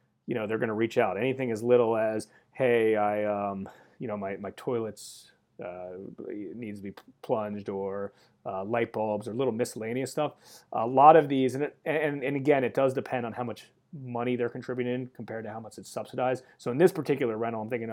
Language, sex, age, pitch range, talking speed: English, male, 30-49, 110-135 Hz, 210 wpm